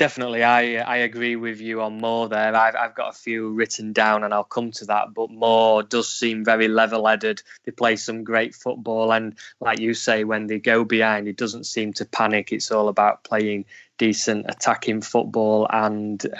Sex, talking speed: male, 195 wpm